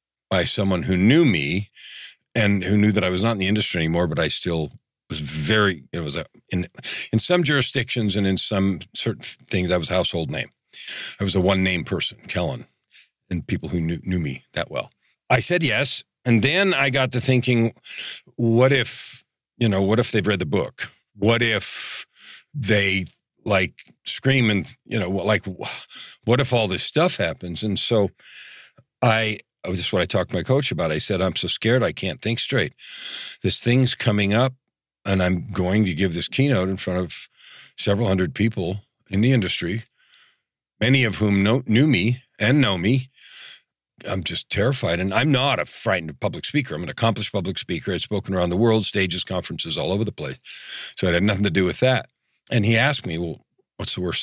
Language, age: English, 50-69